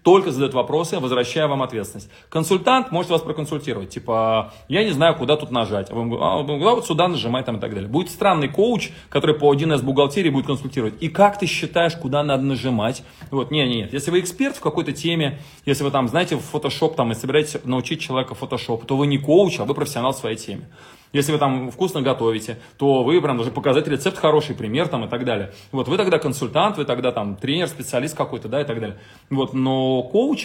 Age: 20-39